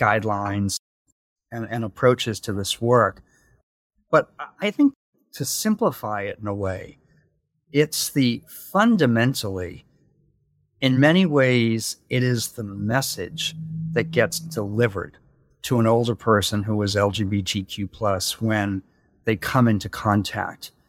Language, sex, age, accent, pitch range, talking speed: English, male, 50-69, American, 105-135 Hz, 120 wpm